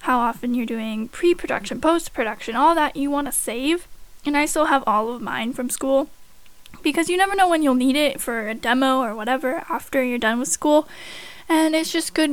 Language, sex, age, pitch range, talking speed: English, female, 10-29, 245-315 Hz, 210 wpm